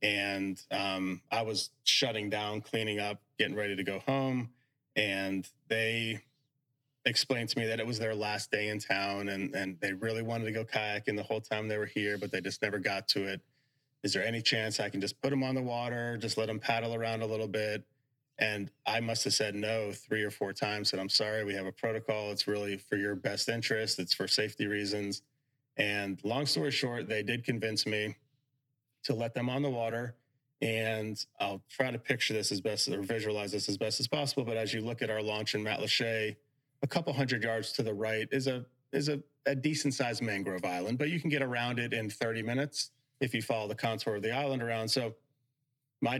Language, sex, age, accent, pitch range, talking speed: English, male, 30-49, American, 105-135 Hz, 215 wpm